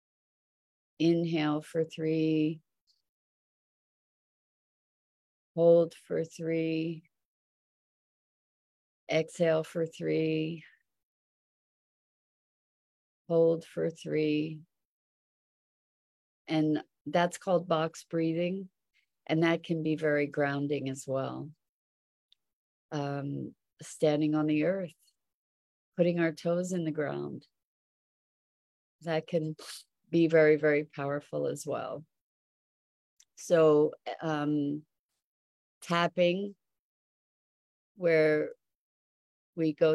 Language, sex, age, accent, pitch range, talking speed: English, female, 40-59, American, 150-165 Hz, 75 wpm